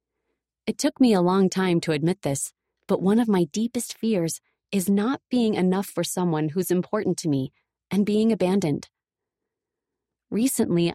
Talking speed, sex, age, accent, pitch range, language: 160 wpm, female, 30-49, American, 175-225 Hz, English